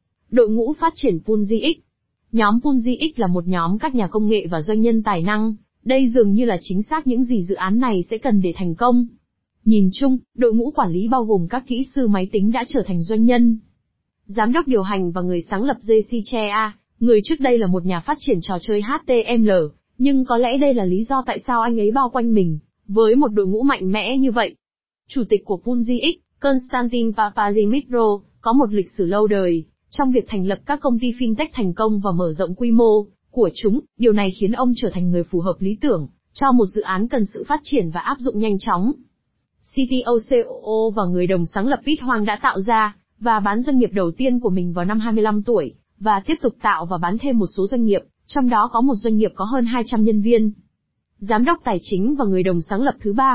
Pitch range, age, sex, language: 200-250 Hz, 20-39, female, Vietnamese